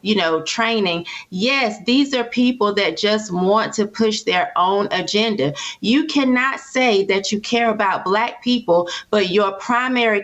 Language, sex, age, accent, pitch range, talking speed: English, female, 30-49, American, 195-245 Hz, 160 wpm